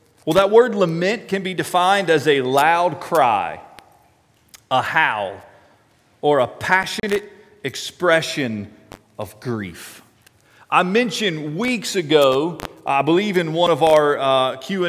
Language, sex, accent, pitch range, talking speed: English, male, American, 140-185 Hz, 120 wpm